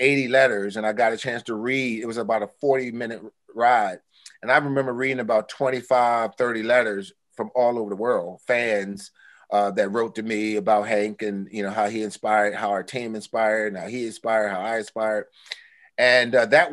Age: 30-49